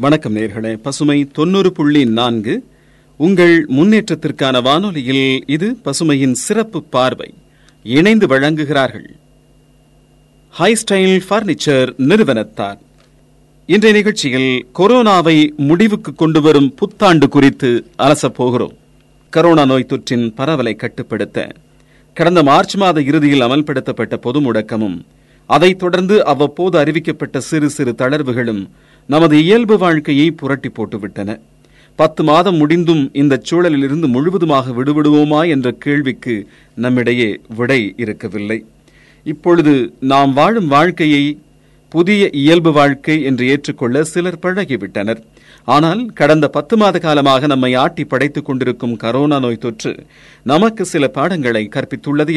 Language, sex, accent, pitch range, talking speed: Tamil, male, native, 125-165 Hz, 85 wpm